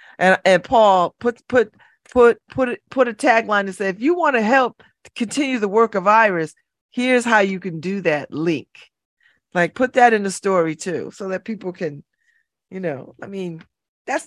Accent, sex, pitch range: American, female, 145-235 Hz